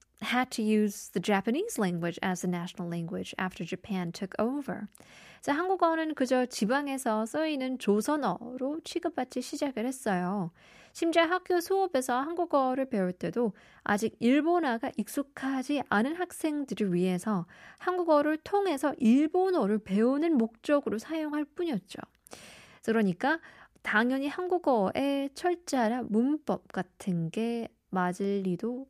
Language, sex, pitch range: Korean, female, 190-275 Hz